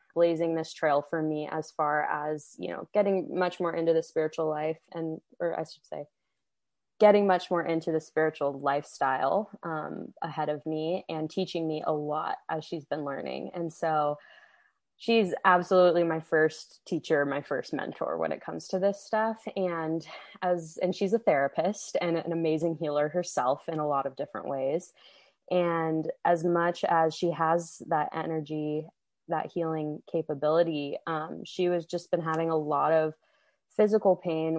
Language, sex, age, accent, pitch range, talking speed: English, female, 20-39, American, 155-195 Hz, 170 wpm